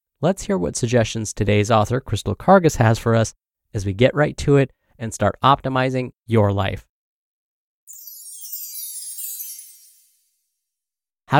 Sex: male